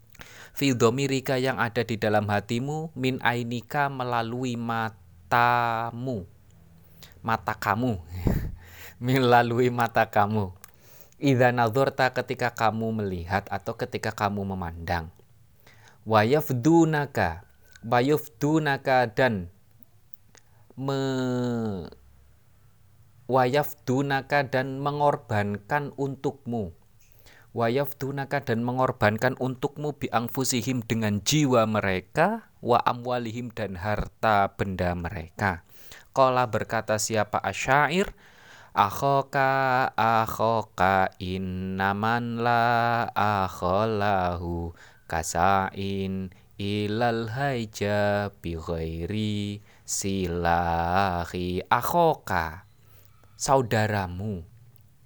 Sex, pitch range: male, 100-130 Hz